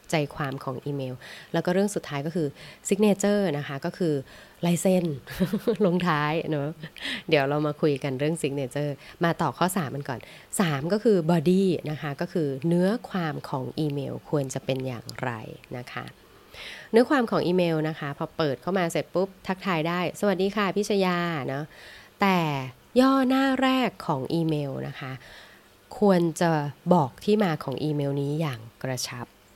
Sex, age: female, 20-39